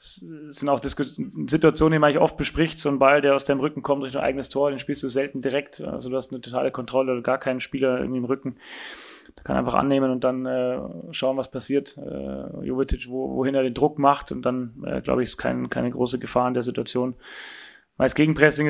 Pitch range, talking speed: 130-140 Hz, 220 wpm